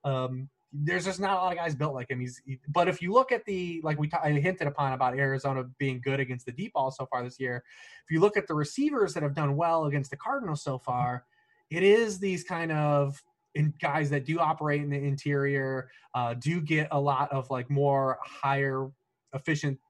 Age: 20-39